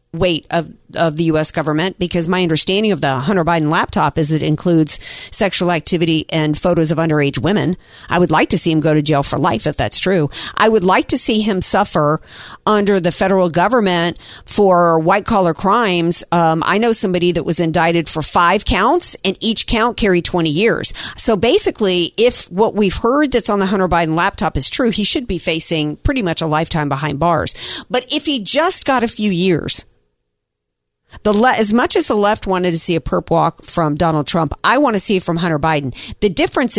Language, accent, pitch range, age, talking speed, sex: English, American, 155-205 Hz, 50-69, 205 wpm, female